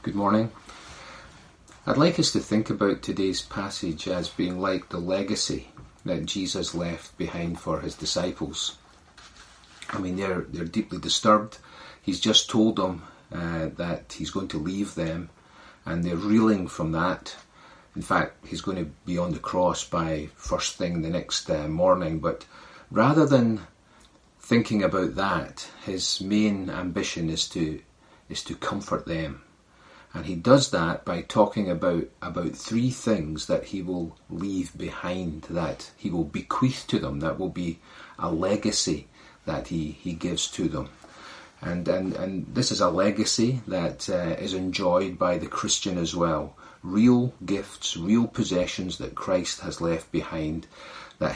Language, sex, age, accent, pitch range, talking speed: English, male, 40-59, British, 85-105 Hz, 155 wpm